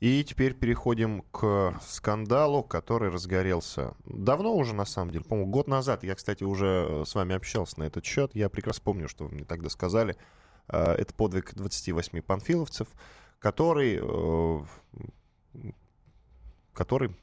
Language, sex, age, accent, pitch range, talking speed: Russian, male, 10-29, native, 85-115 Hz, 130 wpm